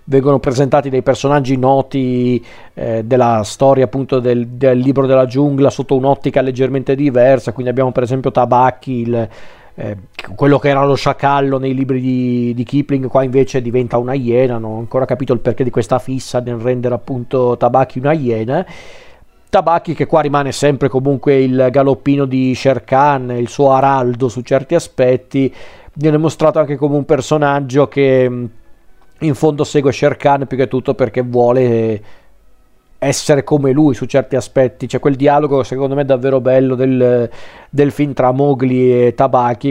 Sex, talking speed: male, 165 wpm